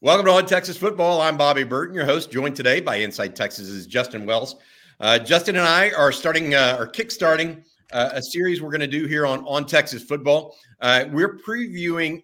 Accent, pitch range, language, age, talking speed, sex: American, 130-175 Hz, English, 50-69, 205 wpm, male